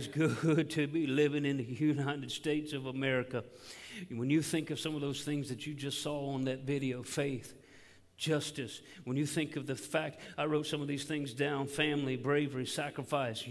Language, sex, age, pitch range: English, male, 50-69, 130-150 Hz